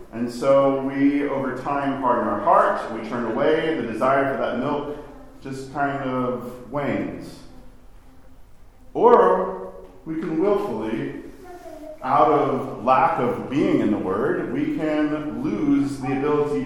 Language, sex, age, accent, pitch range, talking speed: English, male, 40-59, American, 115-145 Hz, 135 wpm